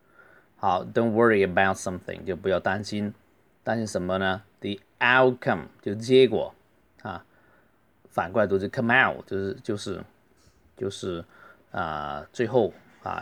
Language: Chinese